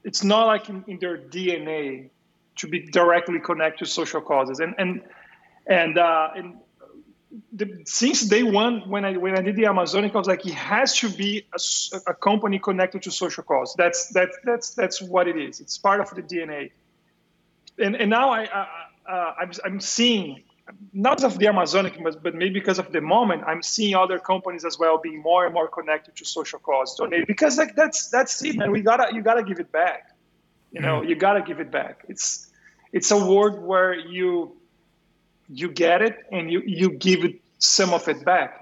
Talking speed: 195 wpm